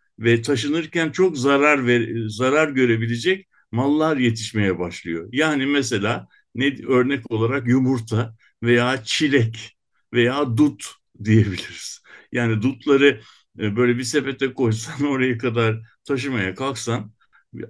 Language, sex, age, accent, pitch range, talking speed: Turkish, male, 60-79, native, 115-145 Hz, 110 wpm